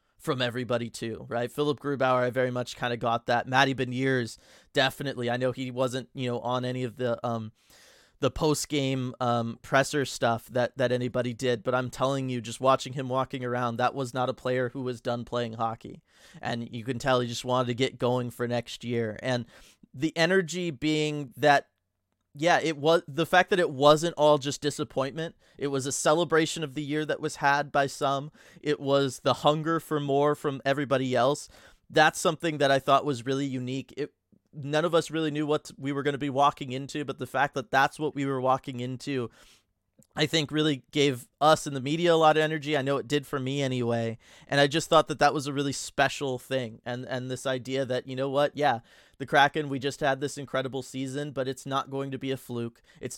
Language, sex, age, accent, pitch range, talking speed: English, male, 20-39, American, 125-145 Hz, 220 wpm